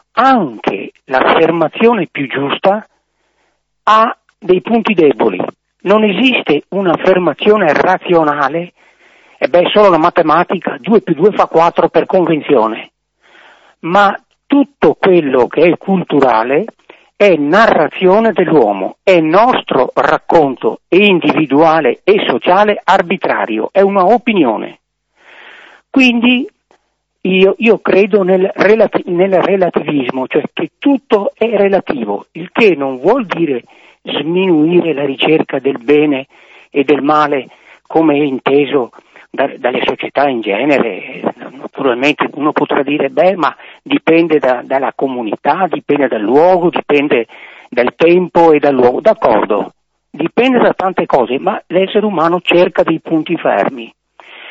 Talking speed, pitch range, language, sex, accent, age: 115 wpm, 150-200 Hz, Italian, male, native, 50-69